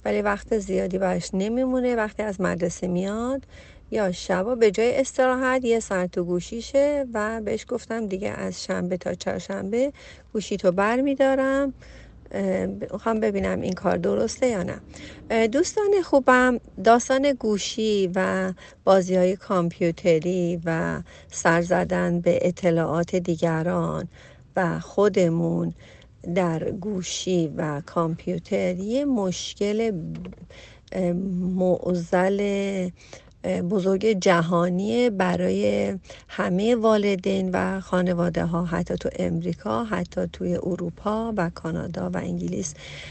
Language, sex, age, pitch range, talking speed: Persian, female, 40-59, 175-220 Hz, 105 wpm